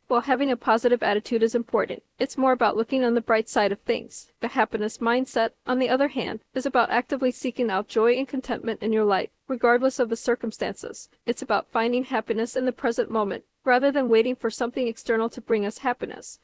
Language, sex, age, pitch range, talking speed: English, female, 40-59, 220-255 Hz, 210 wpm